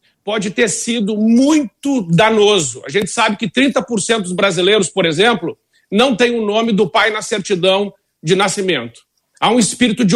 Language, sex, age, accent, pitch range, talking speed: Portuguese, male, 50-69, Brazilian, 195-230 Hz, 165 wpm